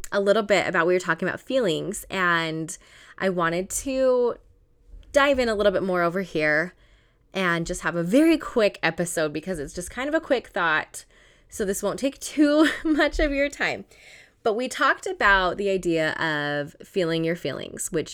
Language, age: English, 20-39